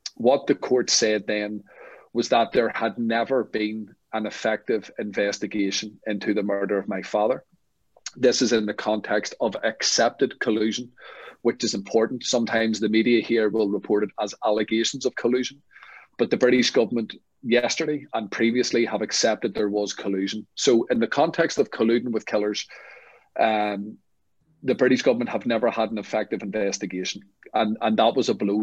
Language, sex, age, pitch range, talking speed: English, male, 40-59, 100-115 Hz, 160 wpm